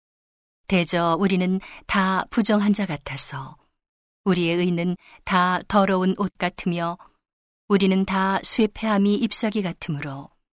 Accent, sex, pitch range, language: native, female, 165-200 Hz, Korean